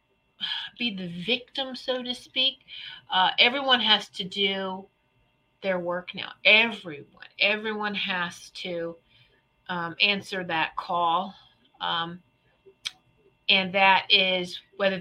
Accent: American